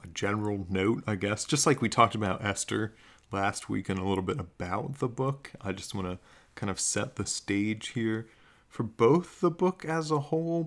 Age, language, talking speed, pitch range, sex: 30-49, English, 210 wpm, 95-125 Hz, male